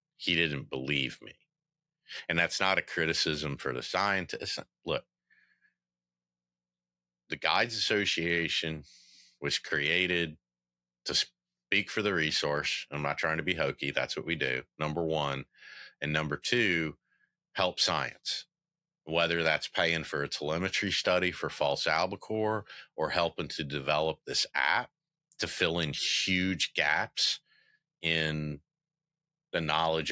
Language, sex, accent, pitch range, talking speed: English, male, American, 70-90 Hz, 130 wpm